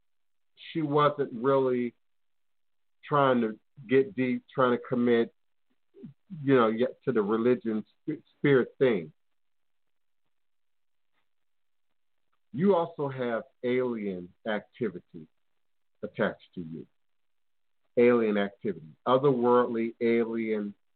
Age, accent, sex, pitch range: 50-69, American, male, 110-140 Hz